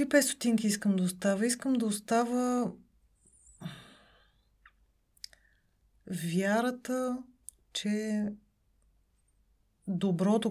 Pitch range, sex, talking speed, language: 180-215 Hz, female, 55 wpm, Bulgarian